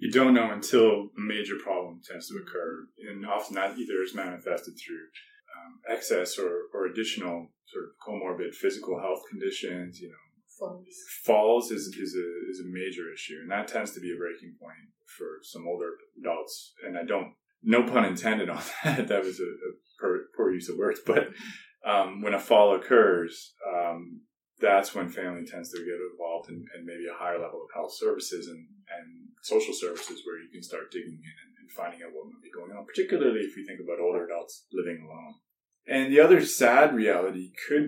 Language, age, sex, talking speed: English, 30-49, male, 195 wpm